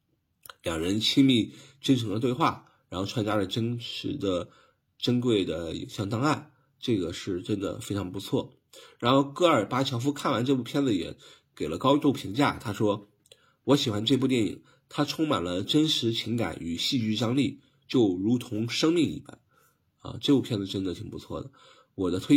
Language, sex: Chinese, male